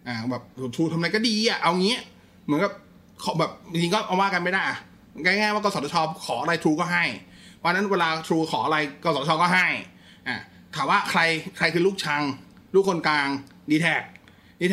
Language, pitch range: Thai, 130-185 Hz